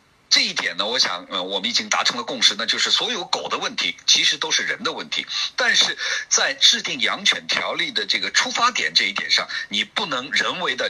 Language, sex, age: Chinese, male, 50-69